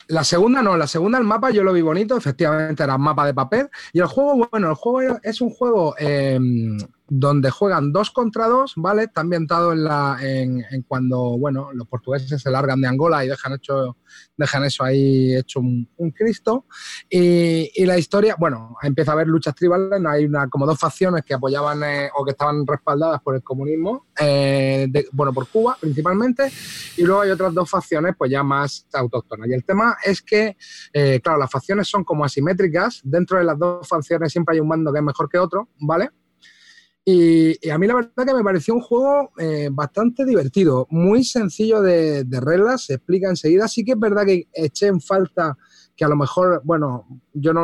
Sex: male